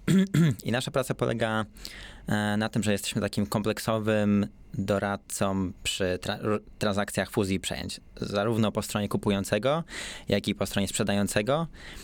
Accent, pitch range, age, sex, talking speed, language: native, 95-110 Hz, 20-39, male, 130 wpm, Polish